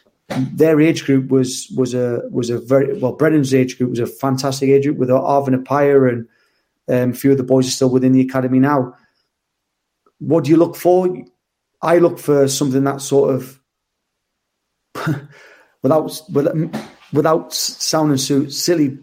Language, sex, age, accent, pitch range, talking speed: English, male, 30-49, British, 130-155 Hz, 165 wpm